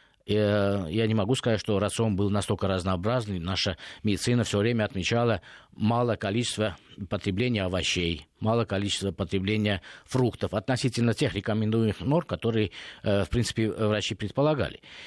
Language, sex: Russian, male